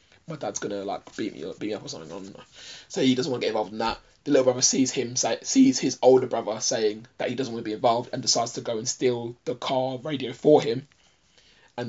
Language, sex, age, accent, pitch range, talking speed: English, male, 20-39, British, 115-130 Hz, 260 wpm